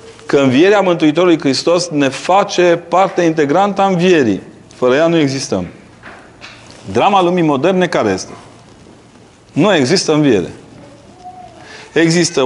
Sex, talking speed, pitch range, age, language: male, 110 wpm, 135-175 Hz, 30-49, Romanian